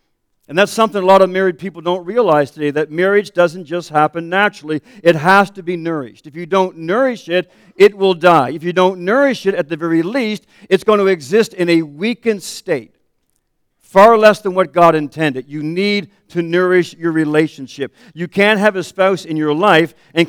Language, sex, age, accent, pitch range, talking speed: English, male, 50-69, American, 160-205 Hz, 200 wpm